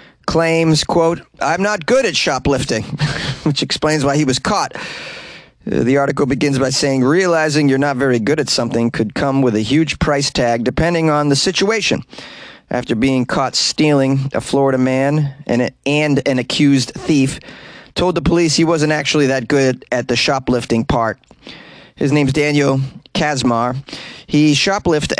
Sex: male